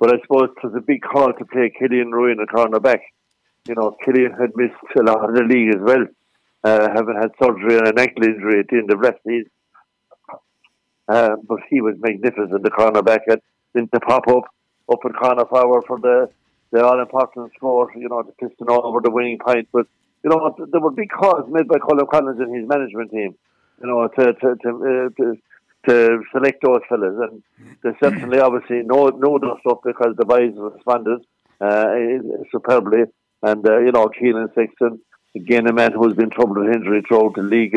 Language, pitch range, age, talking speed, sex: English, 110-130 Hz, 60-79, 205 wpm, male